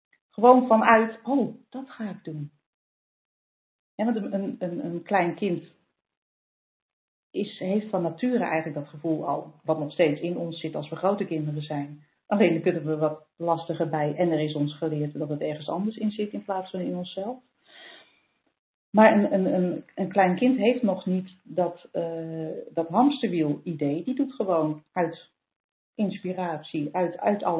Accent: Dutch